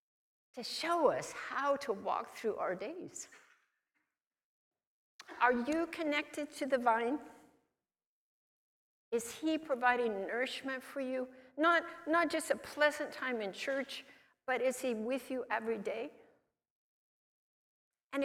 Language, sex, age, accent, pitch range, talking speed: English, female, 60-79, American, 190-275 Hz, 120 wpm